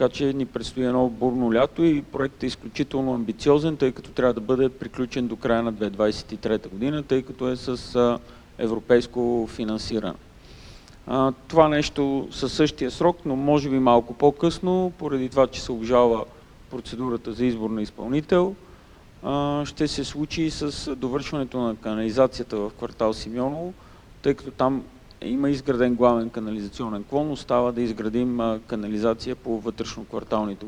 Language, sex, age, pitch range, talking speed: Bulgarian, male, 40-59, 115-140 Hz, 145 wpm